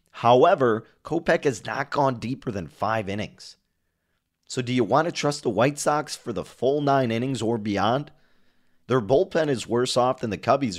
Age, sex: 30-49, male